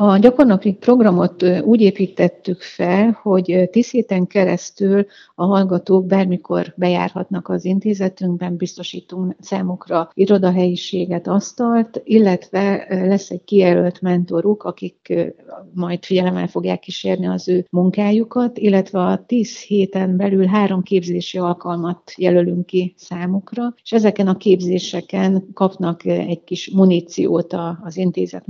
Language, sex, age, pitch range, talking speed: Hungarian, female, 60-79, 175-195 Hz, 115 wpm